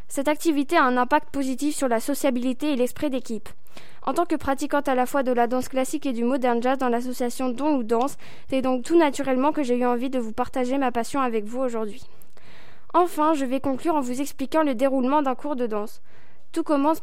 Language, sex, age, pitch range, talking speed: French, female, 10-29, 250-295 Hz, 220 wpm